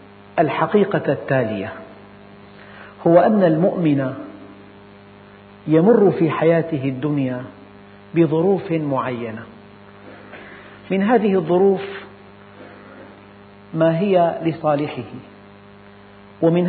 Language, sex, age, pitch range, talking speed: Arabic, male, 50-69, 130-170 Hz, 65 wpm